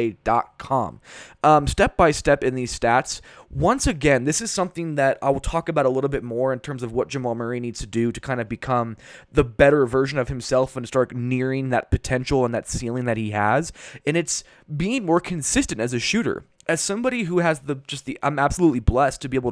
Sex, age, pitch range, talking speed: male, 20-39, 125-155 Hz, 220 wpm